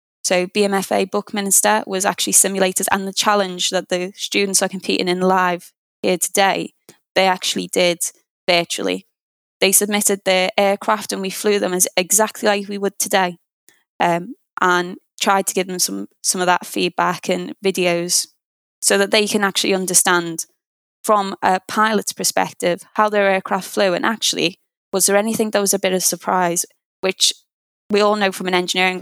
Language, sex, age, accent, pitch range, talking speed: English, female, 10-29, British, 180-205 Hz, 170 wpm